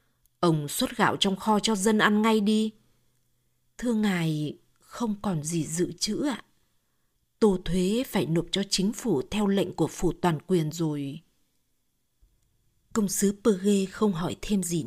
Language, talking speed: Vietnamese, 160 wpm